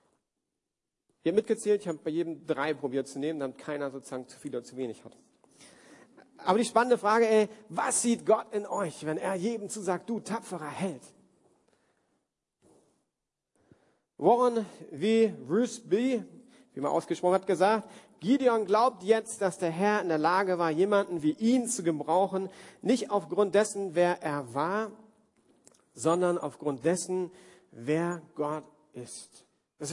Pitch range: 165-225 Hz